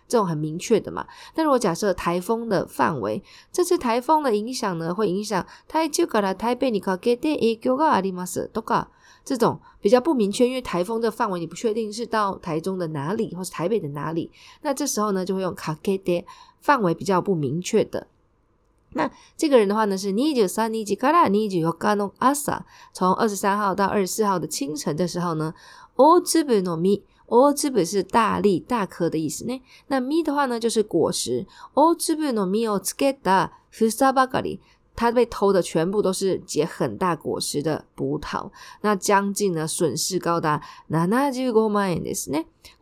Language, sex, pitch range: Chinese, female, 180-250 Hz